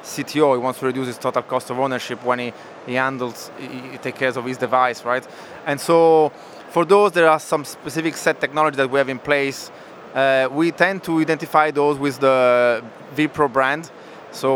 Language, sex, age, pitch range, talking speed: English, male, 20-39, 130-145 Hz, 200 wpm